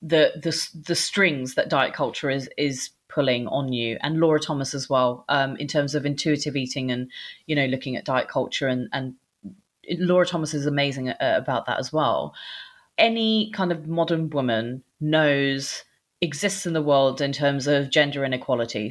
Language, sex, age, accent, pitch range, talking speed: English, female, 30-49, British, 145-175 Hz, 175 wpm